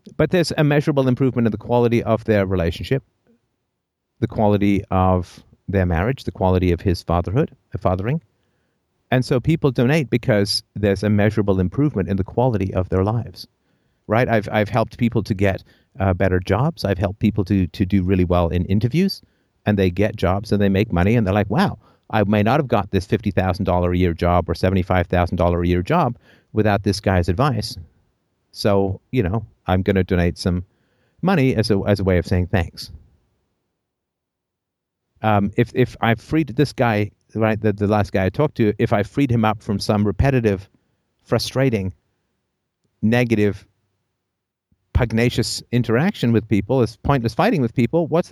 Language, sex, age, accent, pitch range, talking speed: English, male, 50-69, American, 95-120 Hz, 175 wpm